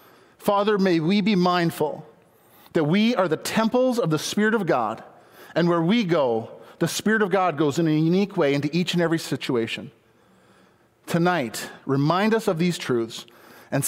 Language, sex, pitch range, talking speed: English, male, 165-205 Hz, 175 wpm